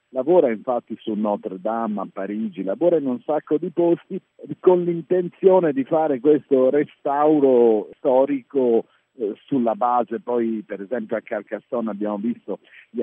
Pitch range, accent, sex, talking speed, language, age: 105-140 Hz, native, male, 140 wpm, Italian, 50-69